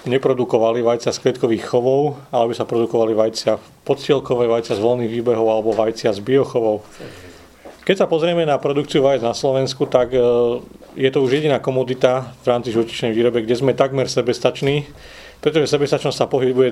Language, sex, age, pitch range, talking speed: Slovak, male, 40-59, 115-130 Hz, 160 wpm